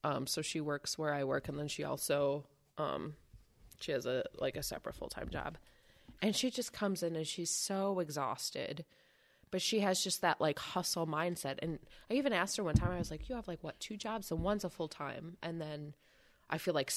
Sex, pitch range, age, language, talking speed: female, 150-195 Hz, 20-39, English, 225 wpm